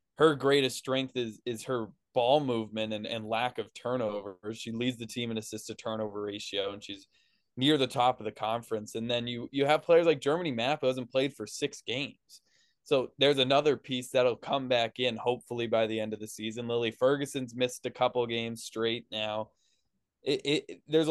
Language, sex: English, male